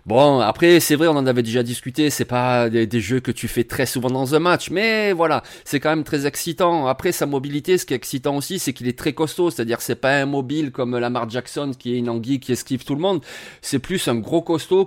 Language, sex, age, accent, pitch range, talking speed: French, male, 30-49, French, 125-160 Hz, 265 wpm